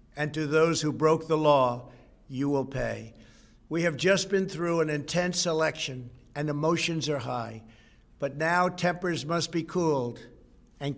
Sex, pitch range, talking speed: male, 140-165 Hz, 160 wpm